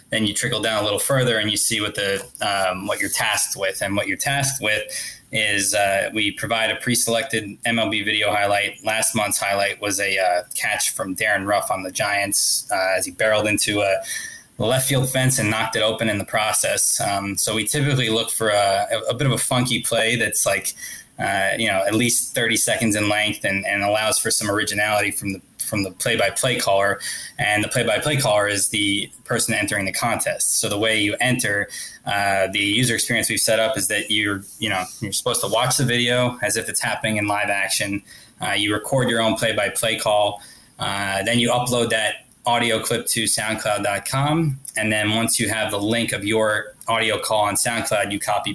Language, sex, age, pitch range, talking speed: English, male, 20-39, 100-115 Hz, 205 wpm